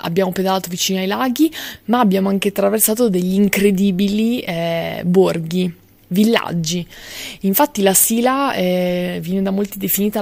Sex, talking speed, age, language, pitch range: female, 130 wpm, 20-39, Italian, 180-205 Hz